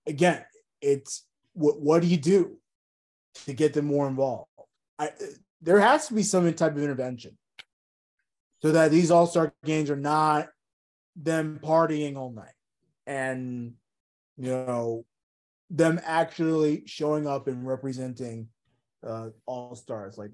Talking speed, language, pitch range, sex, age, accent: 135 wpm, English, 120-155 Hz, male, 30-49, American